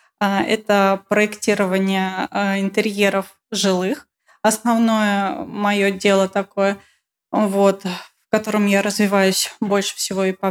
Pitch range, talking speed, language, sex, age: 195-215 Hz, 90 wpm, Russian, female, 20-39